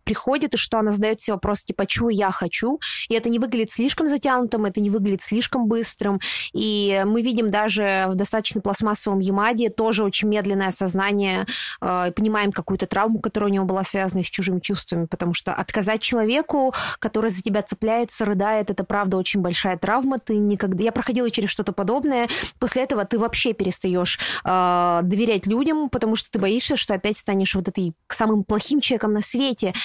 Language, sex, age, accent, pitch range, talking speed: Russian, female, 20-39, native, 200-250 Hz, 180 wpm